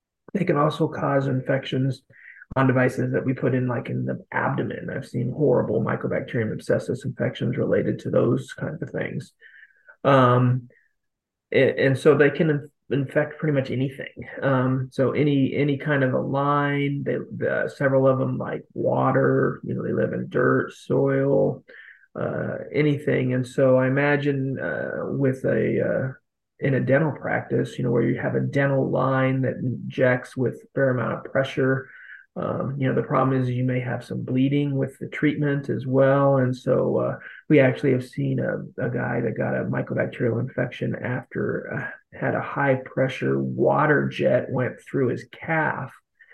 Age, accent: 30-49, American